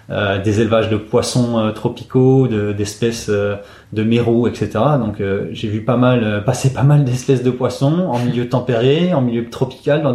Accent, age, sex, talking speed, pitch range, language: French, 20-39, male, 195 wpm, 105-130 Hz, French